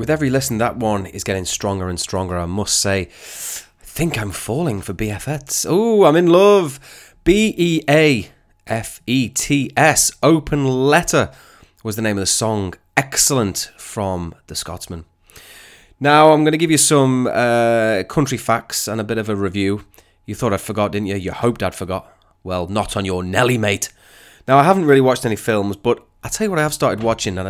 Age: 30-49